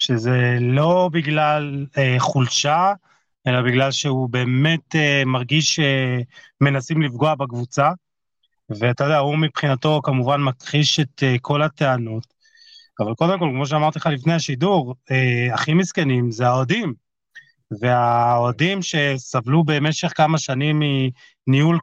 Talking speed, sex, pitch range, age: 120 wpm, male, 130-160 Hz, 30-49